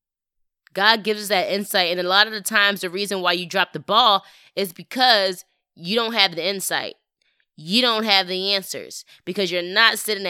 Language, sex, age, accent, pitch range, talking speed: English, female, 20-39, American, 165-200 Hz, 200 wpm